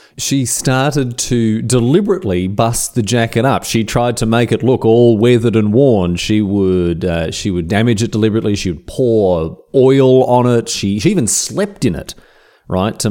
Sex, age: male, 30-49